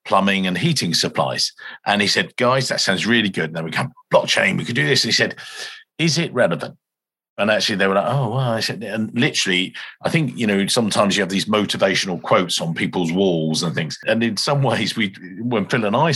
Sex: male